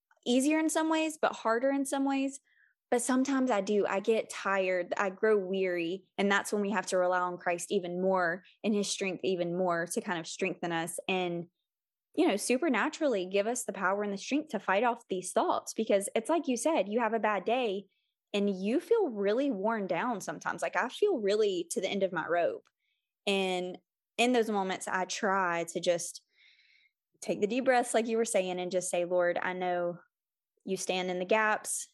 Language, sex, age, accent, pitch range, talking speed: English, female, 20-39, American, 180-225 Hz, 205 wpm